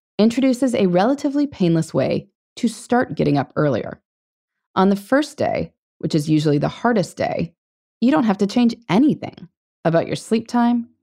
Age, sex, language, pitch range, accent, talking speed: 20-39, female, English, 165-250 Hz, American, 165 wpm